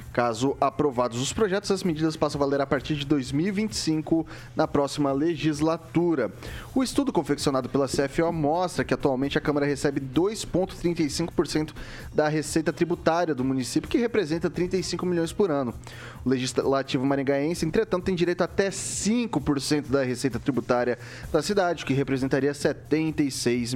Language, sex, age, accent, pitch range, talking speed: Portuguese, male, 20-39, Brazilian, 135-170 Hz, 145 wpm